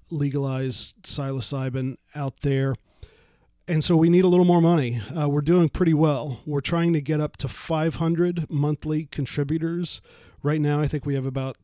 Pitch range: 140-155 Hz